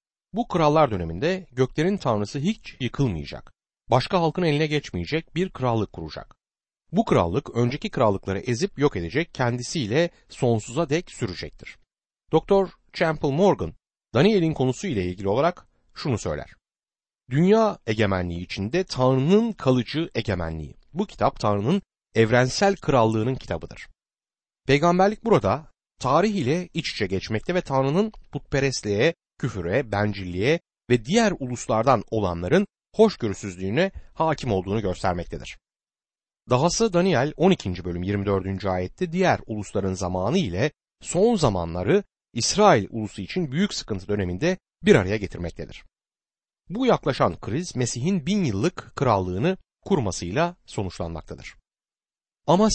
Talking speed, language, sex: 110 wpm, Turkish, male